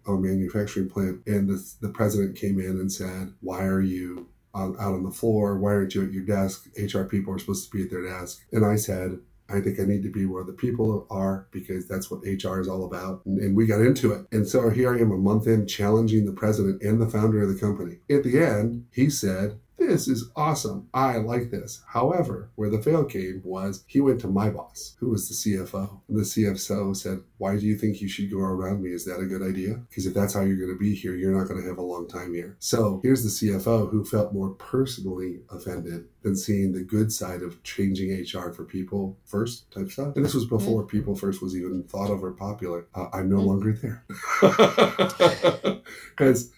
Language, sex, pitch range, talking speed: English, male, 95-110 Hz, 230 wpm